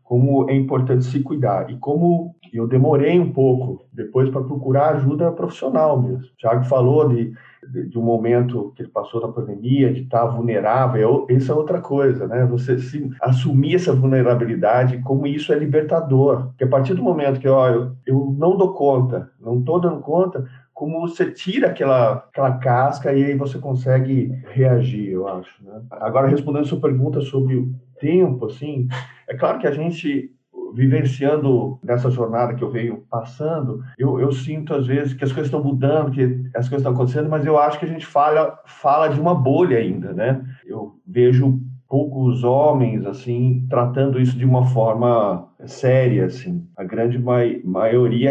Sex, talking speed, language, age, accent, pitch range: male, 175 wpm, Portuguese, 40-59, Brazilian, 125-145 Hz